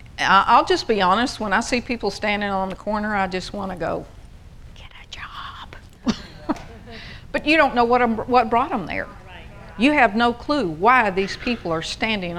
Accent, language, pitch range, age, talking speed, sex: American, English, 165-215 Hz, 50-69, 180 wpm, female